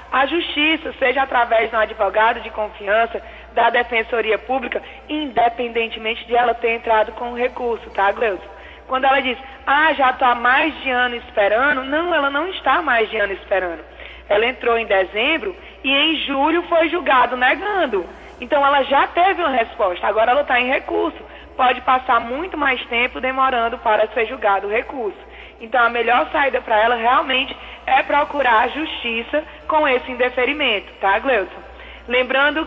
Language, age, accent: Portuguese, 20-39, Brazilian